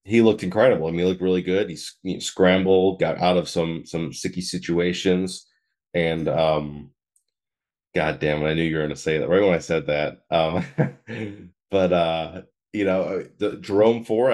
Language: English